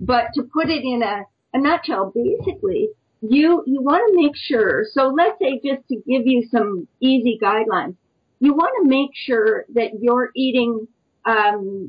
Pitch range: 220-275 Hz